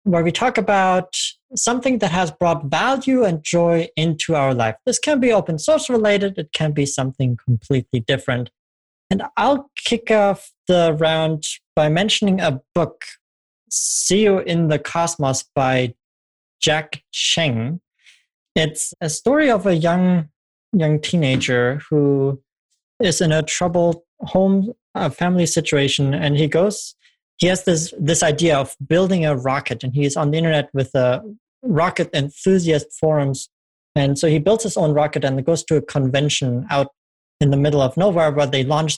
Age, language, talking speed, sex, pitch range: 30-49, English, 160 wpm, male, 135-180 Hz